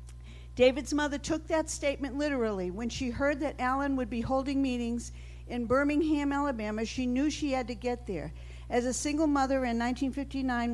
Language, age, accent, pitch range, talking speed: English, 50-69, American, 210-275 Hz, 175 wpm